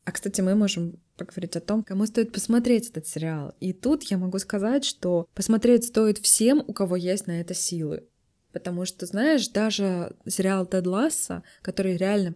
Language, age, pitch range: Russian, 20-39, 170-200 Hz